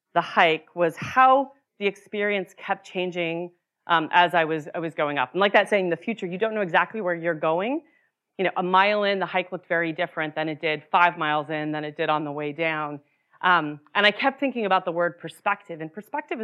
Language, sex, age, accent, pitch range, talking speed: English, female, 30-49, American, 170-235 Hz, 230 wpm